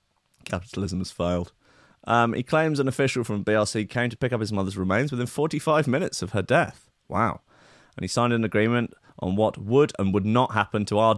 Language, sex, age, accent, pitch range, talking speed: English, male, 30-49, British, 100-135 Hz, 205 wpm